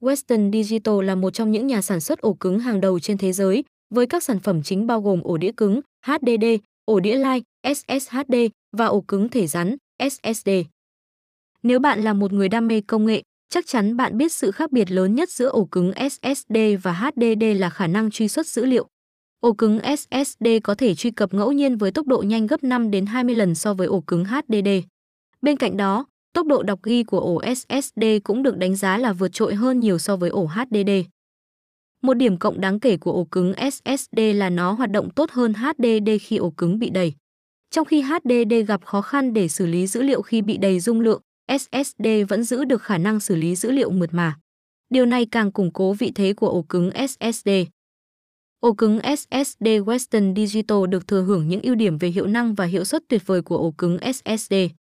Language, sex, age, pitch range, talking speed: Vietnamese, female, 20-39, 195-250 Hz, 215 wpm